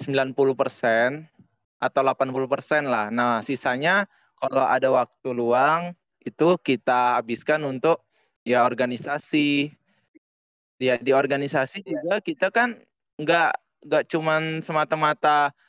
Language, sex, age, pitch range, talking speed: Indonesian, male, 20-39, 130-160 Hz, 100 wpm